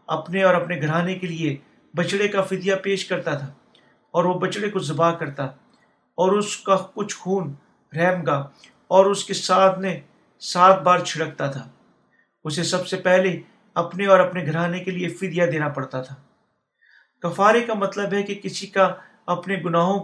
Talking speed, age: 170 wpm, 50-69